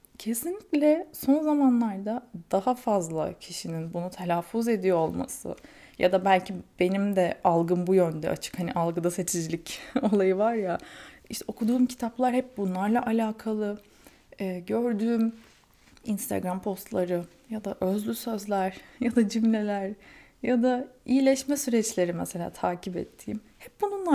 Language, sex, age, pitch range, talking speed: Turkish, female, 20-39, 190-255 Hz, 125 wpm